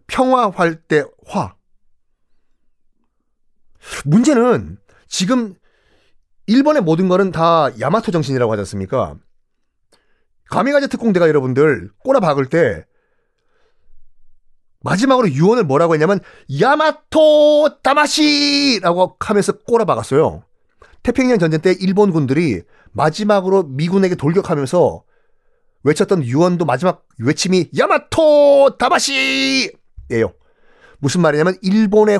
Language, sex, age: Korean, male, 40-59